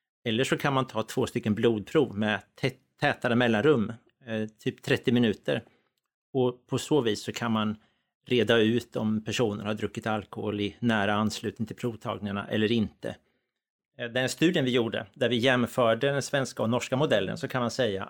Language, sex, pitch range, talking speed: Swedish, male, 110-130 Hz, 170 wpm